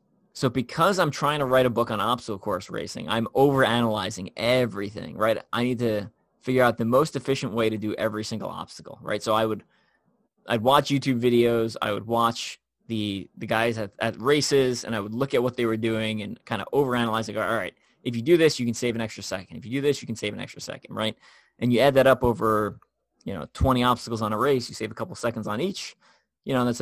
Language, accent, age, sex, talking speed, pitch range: English, American, 20-39, male, 240 wpm, 110-130 Hz